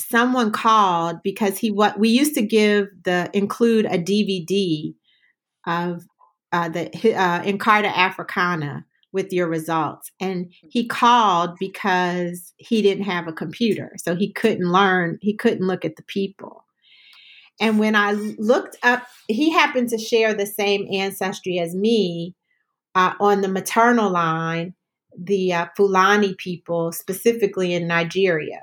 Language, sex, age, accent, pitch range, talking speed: English, female, 40-59, American, 170-205 Hz, 140 wpm